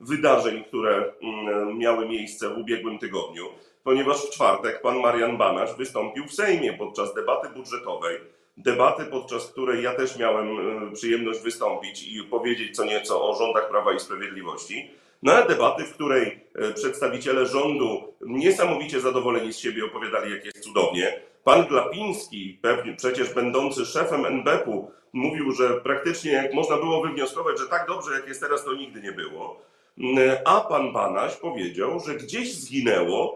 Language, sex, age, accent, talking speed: Polish, male, 40-59, native, 145 wpm